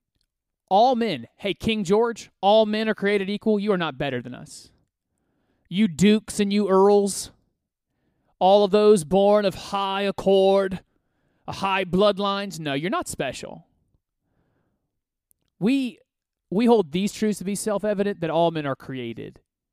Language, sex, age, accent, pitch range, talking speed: English, male, 30-49, American, 145-205 Hz, 145 wpm